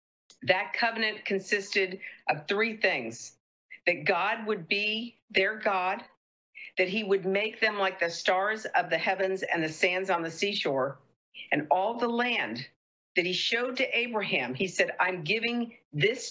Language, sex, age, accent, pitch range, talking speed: English, female, 50-69, American, 175-220 Hz, 160 wpm